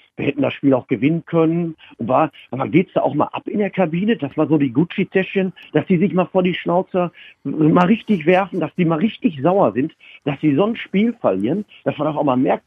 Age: 50-69